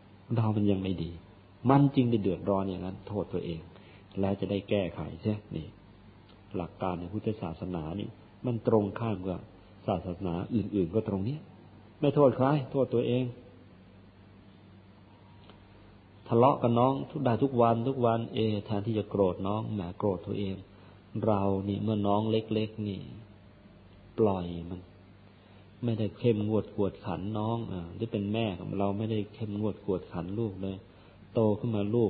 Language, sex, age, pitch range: Thai, male, 50-69, 95-115 Hz